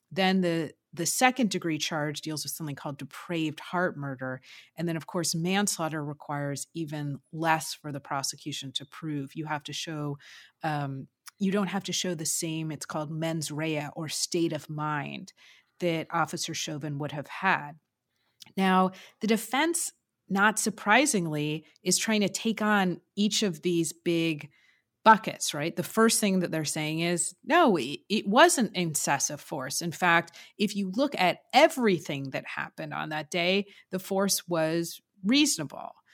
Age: 30-49